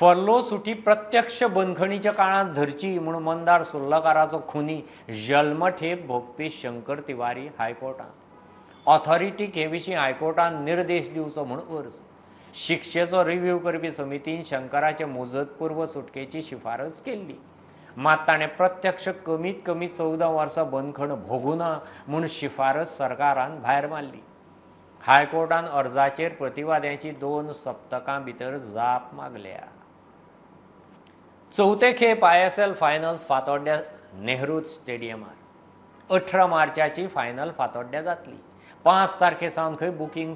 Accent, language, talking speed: Indian, English, 95 wpm